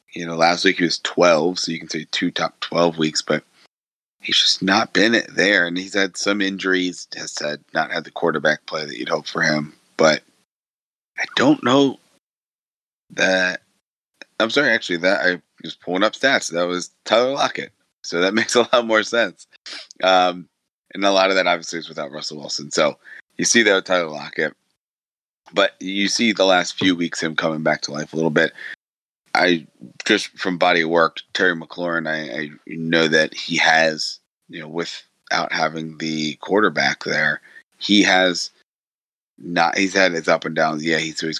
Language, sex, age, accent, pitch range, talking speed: English, male, 30-49, American, 80-95 Hz, 190 wpm